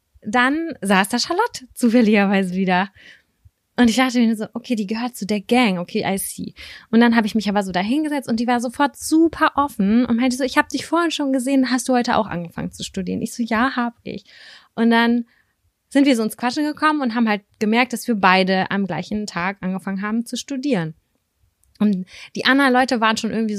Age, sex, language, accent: 20-39, female, German, German